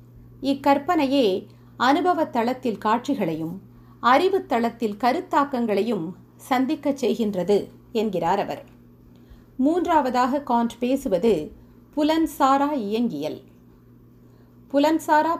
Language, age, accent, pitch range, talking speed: Tamil, 50-69, native, 195-285 Hz, 60 wpm